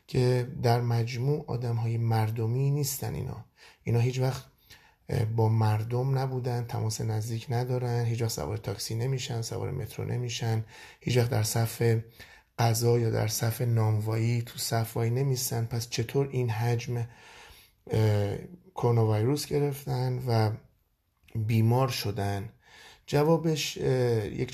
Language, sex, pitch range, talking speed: Persian, male, 110-125 Hz, 115 wpm